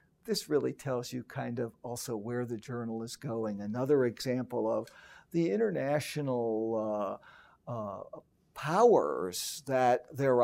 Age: 60-79